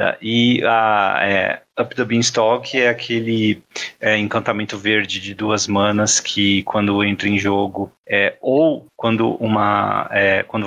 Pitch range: 100-120 Hz